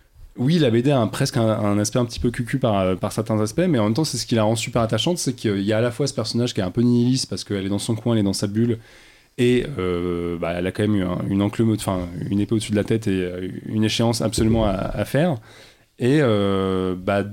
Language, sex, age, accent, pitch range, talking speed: French, male, 20-39, French, 100-120 Hz, 275 wpm